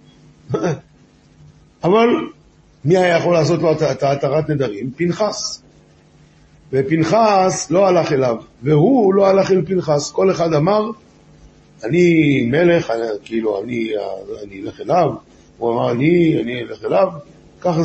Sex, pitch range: male, 145-190 Hz